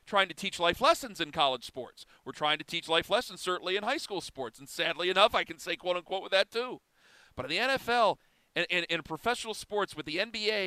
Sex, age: male, 40-59